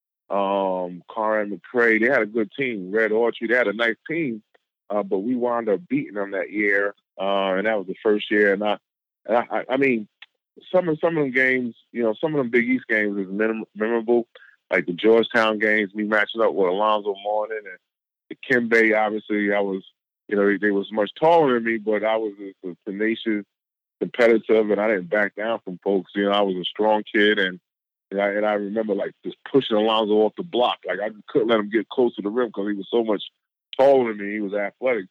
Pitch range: 105-120 Hz